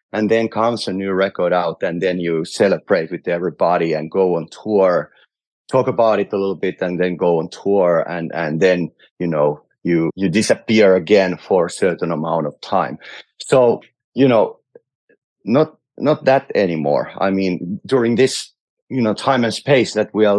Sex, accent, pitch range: male, Finnish, 90-120 Hz